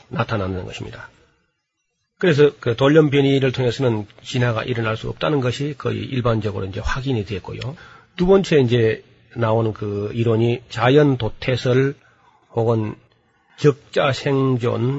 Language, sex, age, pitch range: Korean, male, 40-59, 115-145 Hz